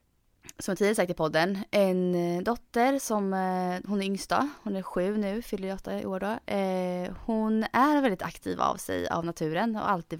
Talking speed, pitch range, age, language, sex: 190 wpm, 185-230 Hz, 20-39, Swedish, female